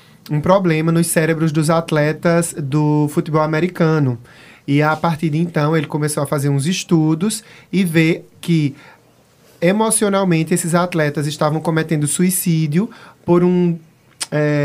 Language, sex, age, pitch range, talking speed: Portuguese, male, 20-39, 150-180 Hz, 130 wpm